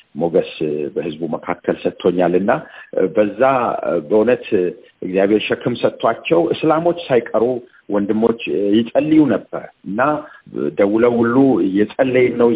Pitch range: 90-120 Hz